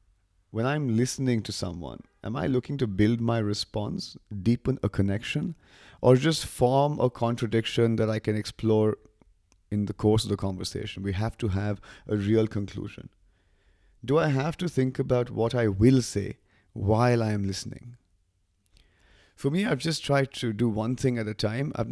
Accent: Indian